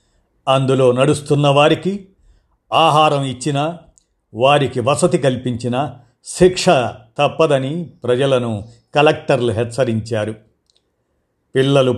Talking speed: 70 wpm